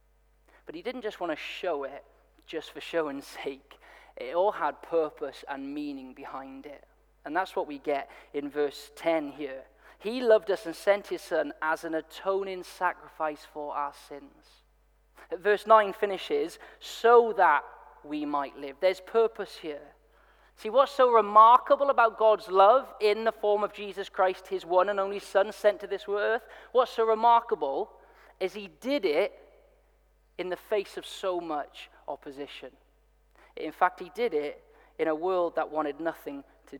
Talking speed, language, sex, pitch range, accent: 170 wpm, English, male, 145-225 Hz, British